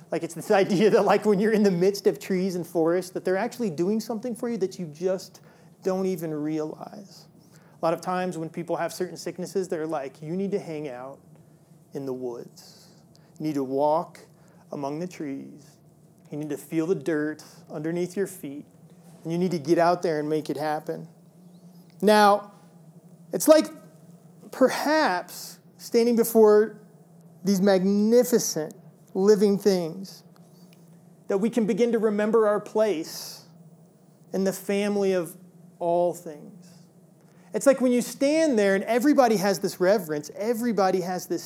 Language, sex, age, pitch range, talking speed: English, male, 30-49, 165-200 Hz, 160 wpm